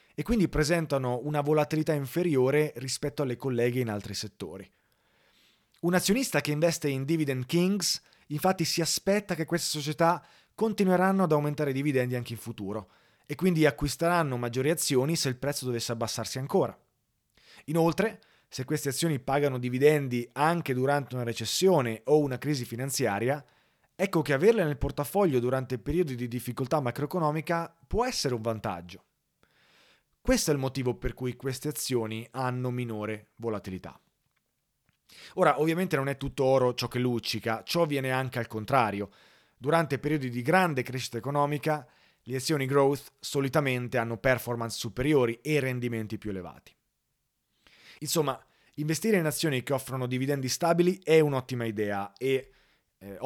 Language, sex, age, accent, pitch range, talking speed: Italian, male, 30-49, native, 125-155 Hz, 145 wpm